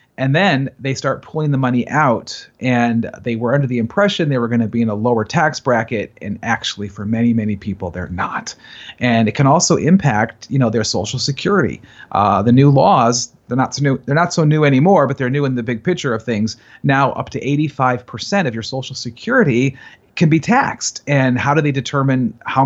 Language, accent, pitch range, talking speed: English, American, 115-145 Hz, 210 wpm